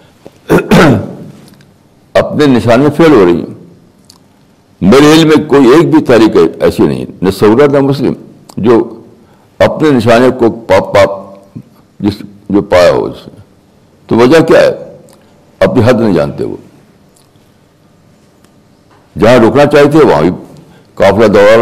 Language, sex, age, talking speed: Urdu, male, 60-79, 130 wpm